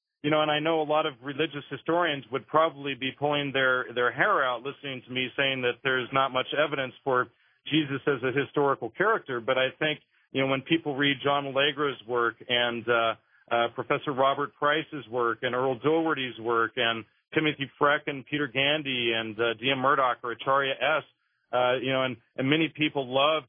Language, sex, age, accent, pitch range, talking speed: English, male, 40-59, American, 125-145 Hz, 195 wpm